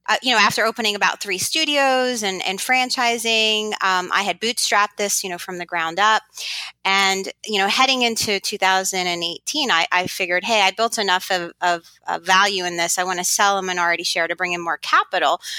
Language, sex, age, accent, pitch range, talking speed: English, female, 30-49, American, 185-245 Hz, 205 wpm